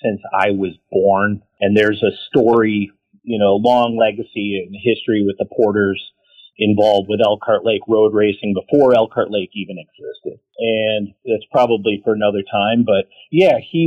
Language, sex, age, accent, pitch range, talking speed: English, male, 40-59, American, 100-130 Hz, 160 wpm